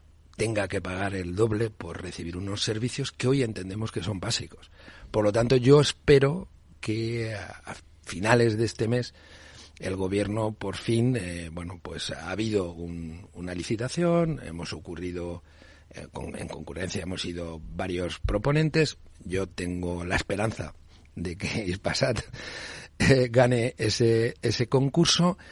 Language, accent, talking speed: Spanish, Spanish, 140 wpm